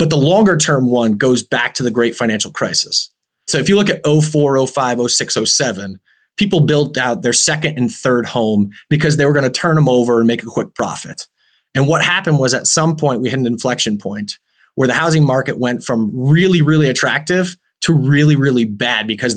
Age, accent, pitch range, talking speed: 30-49, American, 115-155 Hz, 210 wpm